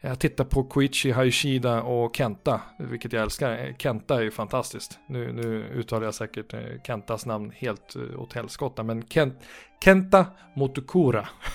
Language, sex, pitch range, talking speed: Swedish, male, 115-155 Hz, 140 wpm